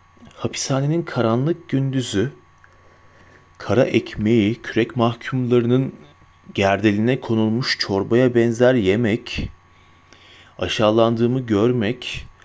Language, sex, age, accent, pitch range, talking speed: Turkish, male, 40-59, native, 95-135 Hz, 65 wpm